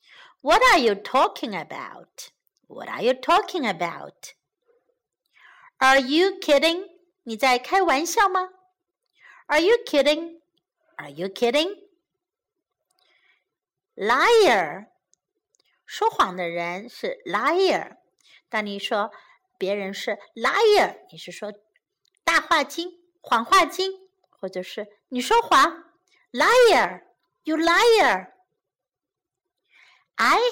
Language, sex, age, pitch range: Chinese, female, 60-79, 245-380 Hz